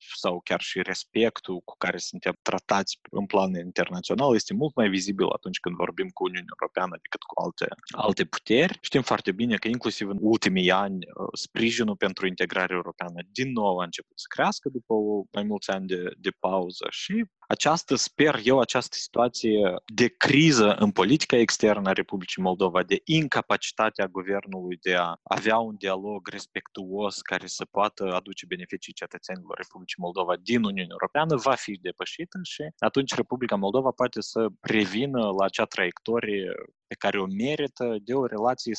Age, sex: 20-39, male